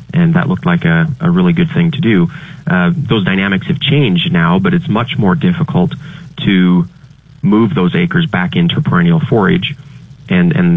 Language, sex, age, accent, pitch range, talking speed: English, male, 30-49, American, 155-175 Hz, 180 wpm